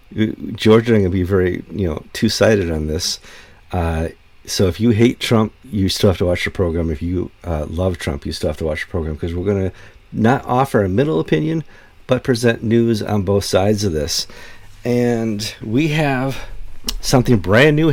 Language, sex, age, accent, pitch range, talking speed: English, male, 50-69, American, 90-115 Hz, 185 wpm